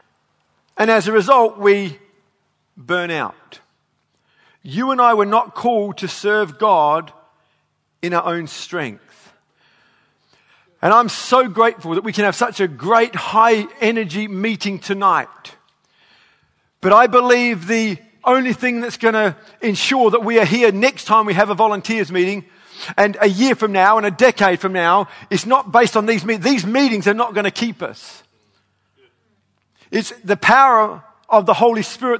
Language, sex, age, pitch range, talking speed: English, male, 40-59, 200-240 Hz, 160 wpm